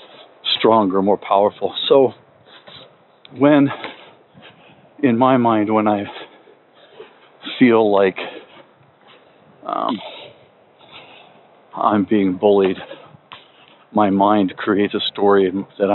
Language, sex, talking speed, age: English, male, 85 wpm, 50-69